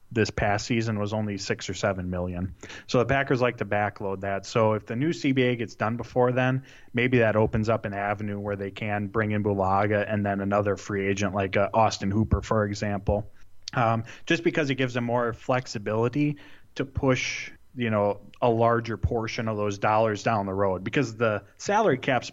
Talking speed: 195 wpm